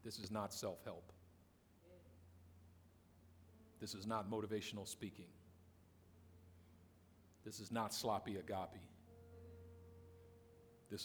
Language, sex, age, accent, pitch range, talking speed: English, male, 50-69, American, 85-105 Hz, 80 wpm